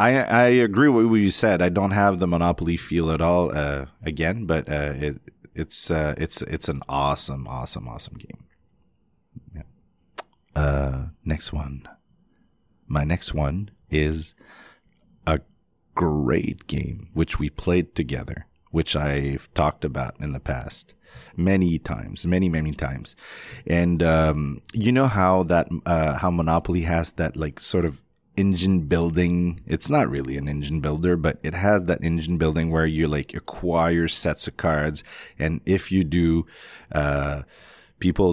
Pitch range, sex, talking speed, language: 75-90 Hz, male, 150 wpm, English